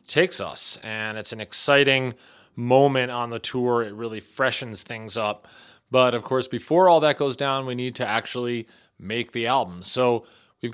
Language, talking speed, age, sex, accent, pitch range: English, 180 wpm, 30-49, male, American, 115-135 Hz